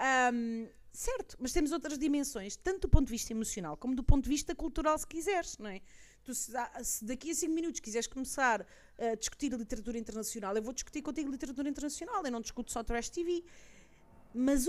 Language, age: Portuguese, 30-49